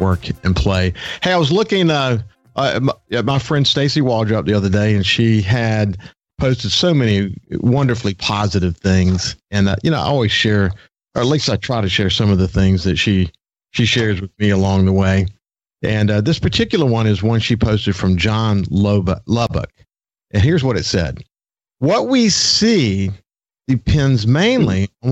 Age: 50-69